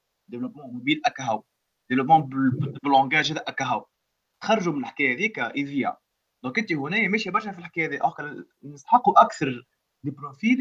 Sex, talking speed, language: male, 155 wpm, Arabic